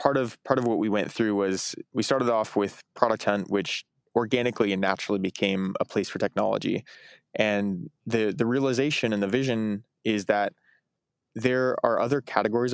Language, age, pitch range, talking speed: English, 20-39, 100-115 Hz, 175 wpm